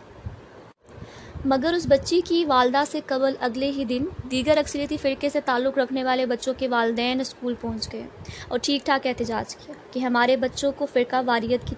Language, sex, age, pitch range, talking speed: Urdu, female, 20-39, 250-285 Hz, 180 wpm